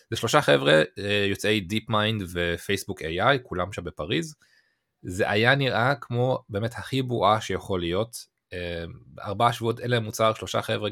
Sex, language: male, Hebrew